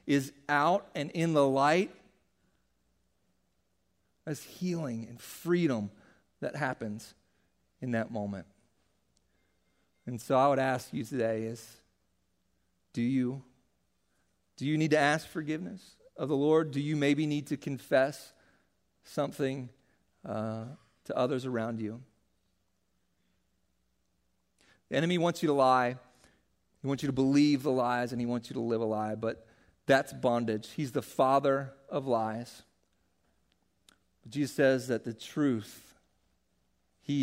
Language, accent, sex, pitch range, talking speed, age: English, American, male, 110-145 Hz, 130 wpm, 40-59